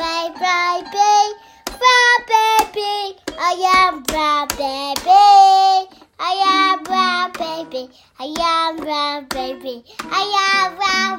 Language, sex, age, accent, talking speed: English, male, 20-39, British, 120 wpm